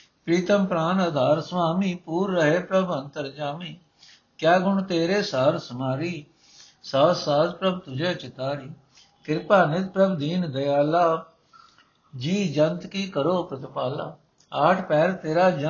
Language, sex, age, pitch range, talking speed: Punjabi, male, 60-79, 135-170 Hz, 115 wpm